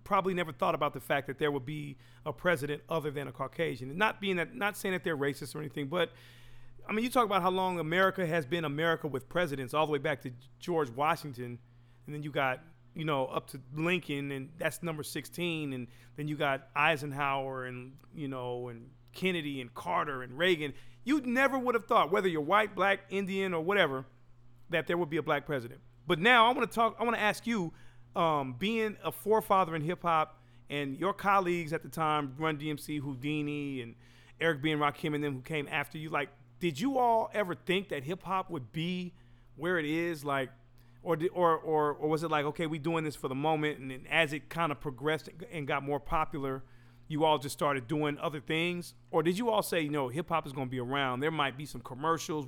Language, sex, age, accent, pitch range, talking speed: English, male, 40-59, American, 135-175 Hz, 225 wpm